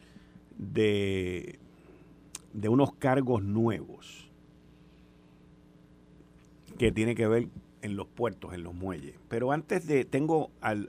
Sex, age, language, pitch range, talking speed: male, 50-69, Spanish, 105-180 Hz, 110 wpm